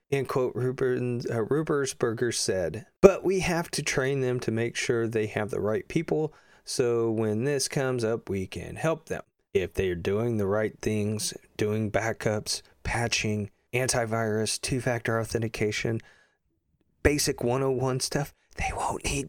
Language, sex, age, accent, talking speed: English, male, 30-49, American, 145 wpm